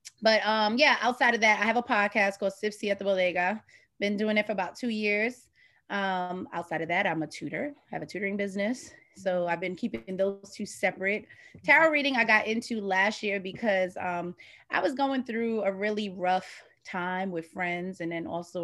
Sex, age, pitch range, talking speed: female, 20-39, 185-230 Hz, 205 wpm